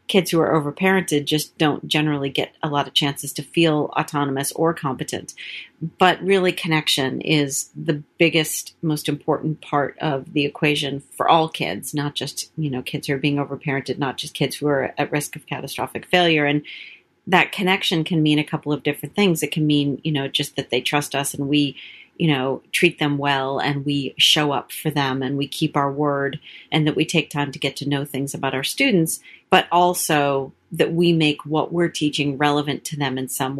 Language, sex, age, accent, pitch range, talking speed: English, female, 40-59, American, 140-160 Hz, 205 wpm